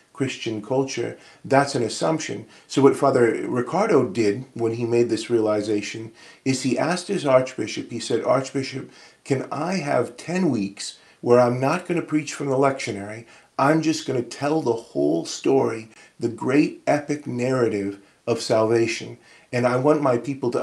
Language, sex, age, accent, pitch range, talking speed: English, male, 40-59, American, 110-140 Hz, 165 wpm